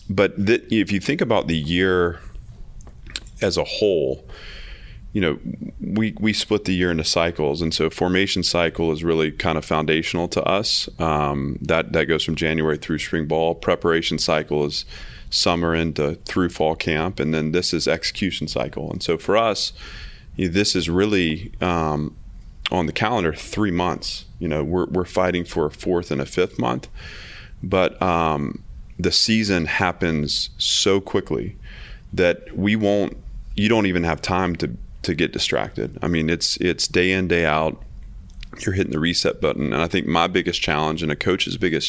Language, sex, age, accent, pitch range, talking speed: English, male, 30-49, American, 80-95 Hz, 180 wpm